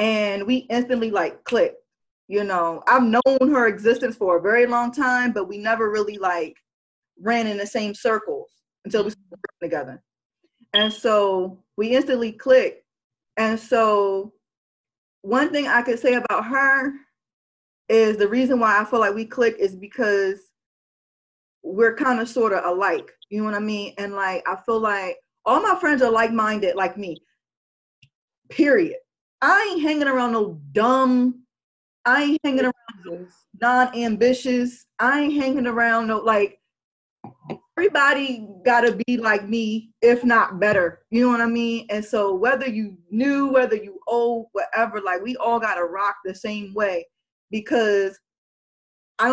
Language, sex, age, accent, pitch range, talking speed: English, female, 20-39, American, 205-255 Hz, 160 wpm